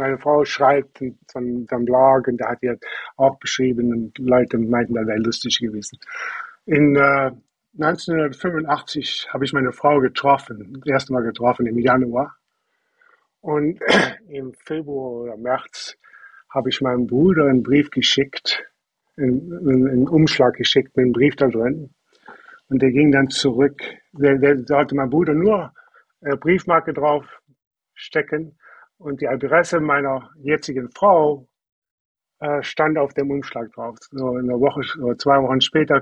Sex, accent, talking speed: male, German, 150 wpm